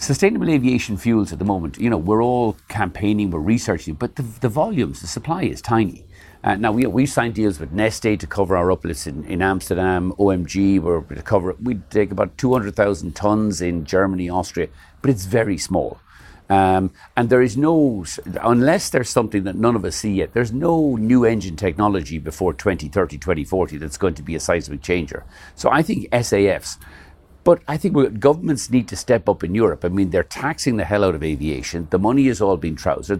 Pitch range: 85-120 Hz